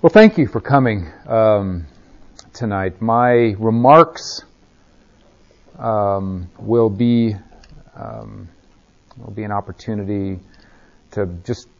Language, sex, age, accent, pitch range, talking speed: English, male, 40-59, American, 95-120 Hz, 95 wpm